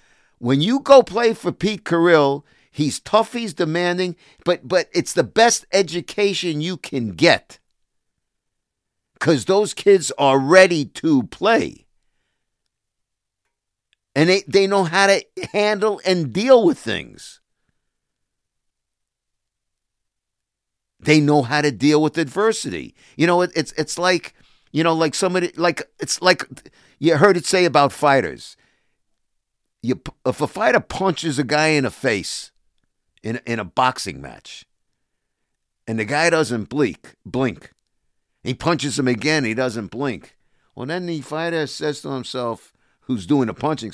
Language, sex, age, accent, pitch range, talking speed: English, male, 50-69, American, 130-180 Hz, 140 wpm